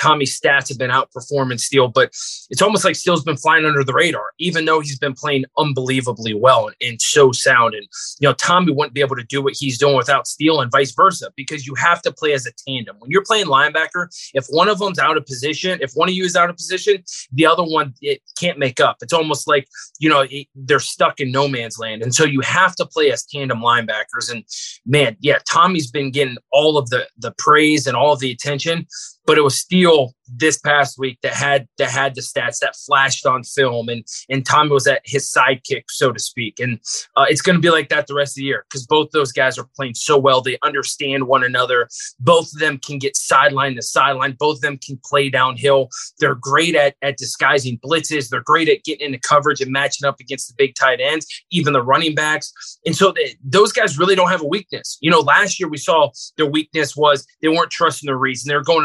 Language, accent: English, American